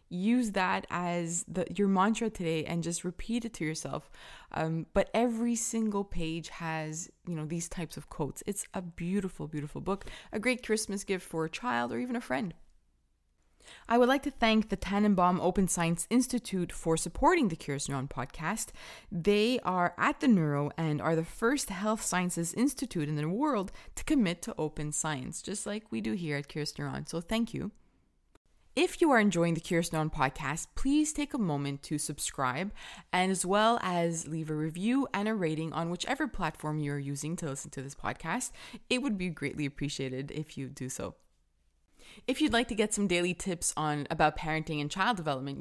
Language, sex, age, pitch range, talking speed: English, female, 20-39, 150-215 Hz, 190 wpm